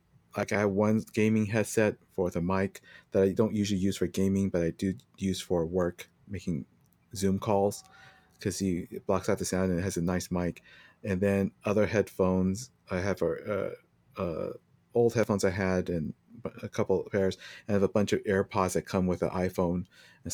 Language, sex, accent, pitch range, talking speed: English, male, American, 95-130 Hz, 200 wpm